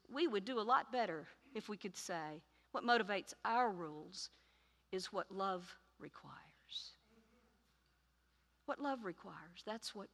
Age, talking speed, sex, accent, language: 50-69, 135 wpm, female, American, English